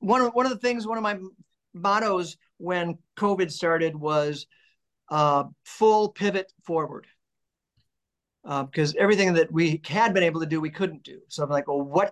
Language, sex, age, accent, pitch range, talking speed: English, male, 50-69, American, 165-200 Hz, 180 wpm